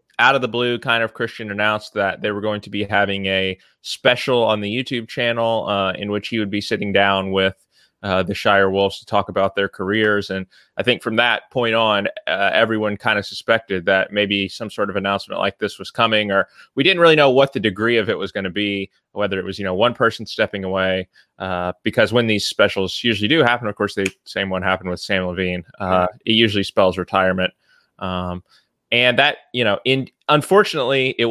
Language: English